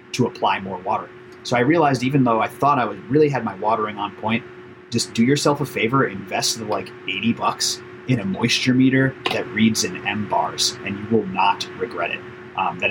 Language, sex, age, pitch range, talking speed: English, male, 30-49, 110-130 Hz, 215 wpm